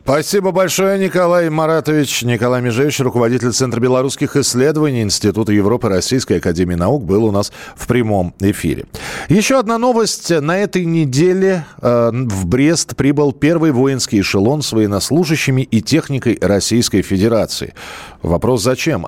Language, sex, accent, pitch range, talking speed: Russian, male, native, 115-160 Hz, 130 wpm